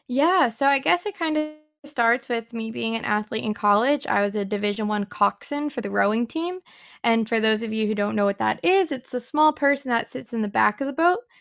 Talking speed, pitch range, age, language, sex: 250 wpm, 215-275 Hz, 10-29, English, female